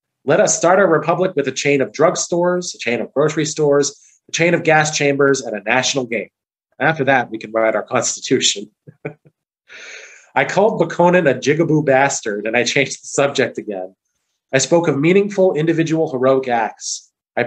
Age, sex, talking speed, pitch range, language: 30-49, male, 175 wpm, 125-155 Hz, English